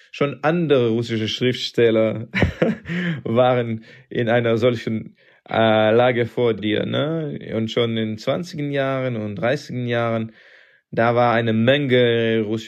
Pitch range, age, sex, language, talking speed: 110-130 Hz, 20-39, male, German, 130 wpm